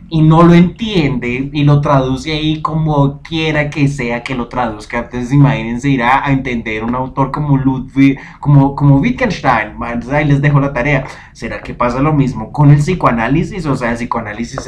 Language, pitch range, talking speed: Spanish, 125-150 Hz, 180 wpm